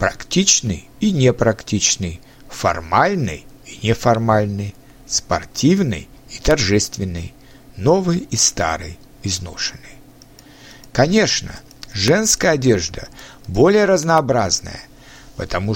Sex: male